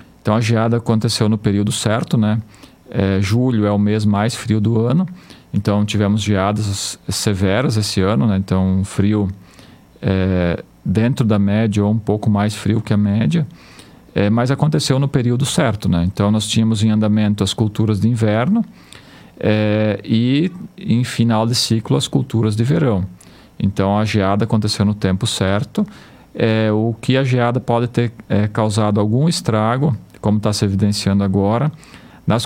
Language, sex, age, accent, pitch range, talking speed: Portuguese, male, 40-59, Brazilian, 105-120 Hz, 150 wpm